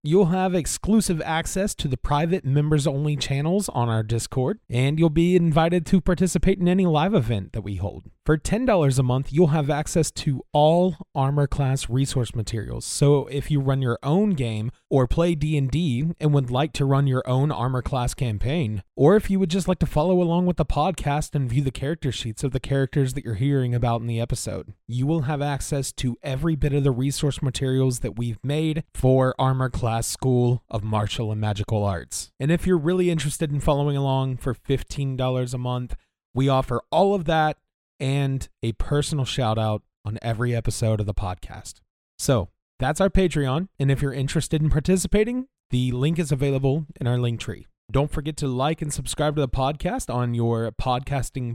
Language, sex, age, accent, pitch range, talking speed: English, male, 30-49, American, 120-155 Hz, 195 wpm